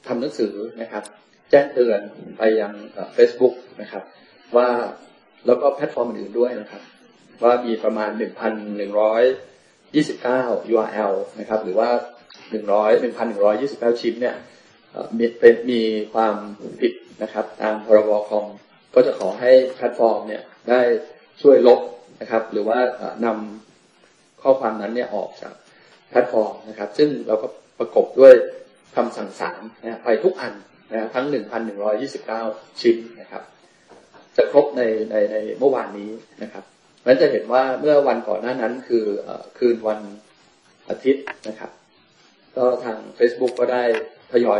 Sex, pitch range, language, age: male, 105-125 Hz, Thai, 20-39